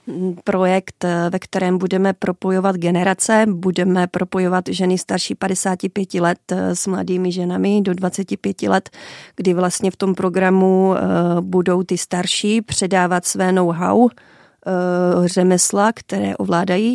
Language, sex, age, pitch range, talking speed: Czech, female, 30-49, 175-190 Hz, 115 wpm